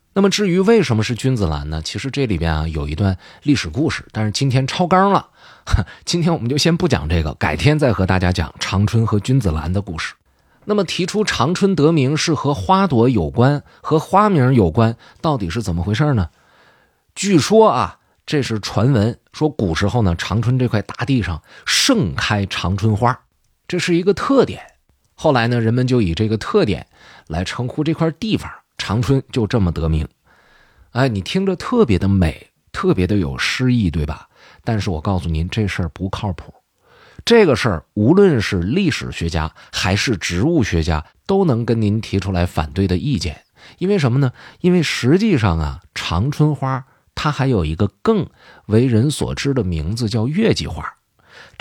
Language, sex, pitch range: Chinese, male, 95-150 Hz